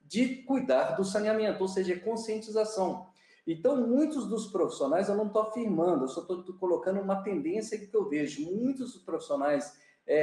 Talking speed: 165 wpm